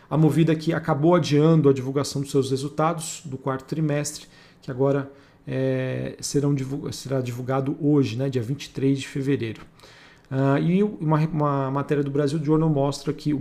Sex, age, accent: male, 40-59, Brazilian